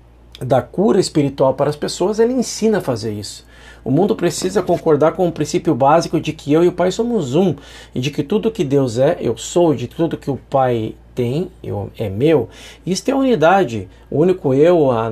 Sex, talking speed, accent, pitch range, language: male, 205 wpm, Brazilian, 130-170 Hz, Portuguese